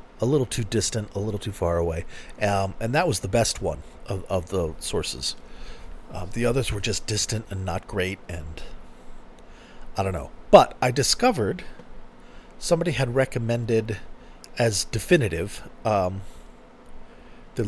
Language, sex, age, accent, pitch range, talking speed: English, male, 40-59, American, 95-130 Hz, 145 wpm